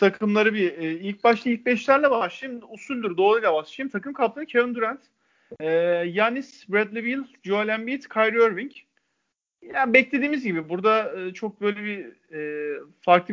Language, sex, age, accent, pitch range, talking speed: Turkish, male, 40-59, native, 175-230 Hz, 140 wpm